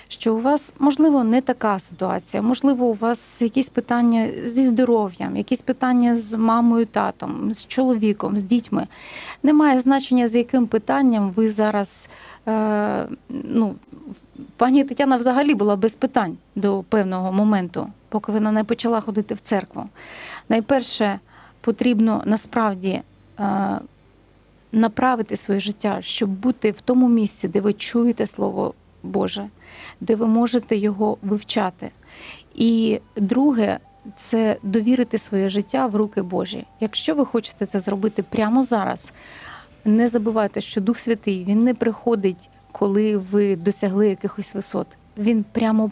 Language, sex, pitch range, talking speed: Ukrainian, female, 205-245 Hz, 130 wpm